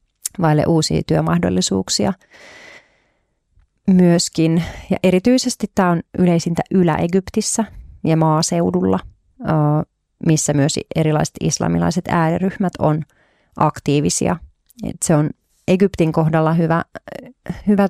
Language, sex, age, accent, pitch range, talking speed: Finnish, female, 30-49, native, 150-175 Hz, 85 wpm